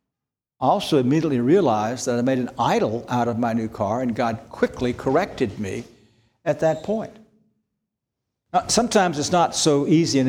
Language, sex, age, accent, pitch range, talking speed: English, male, 60-79, American, 120-160 Hz, 170 wpm